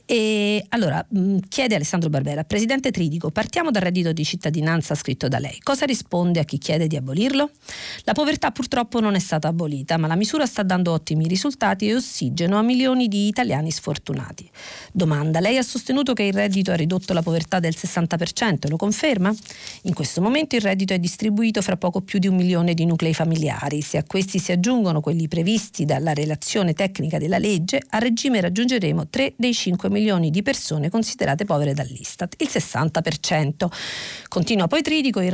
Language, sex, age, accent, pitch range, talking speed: Italian, female, 40-59, native, 165-215 Hz, 180 wpm